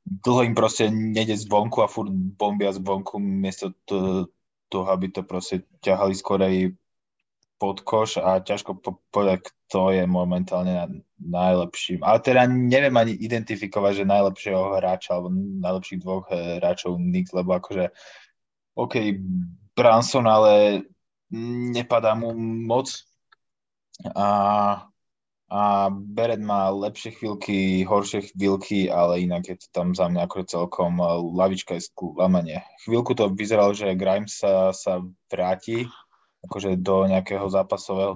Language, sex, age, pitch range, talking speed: Slovak, male, 20-39, 95-110 Hz, 130 wpm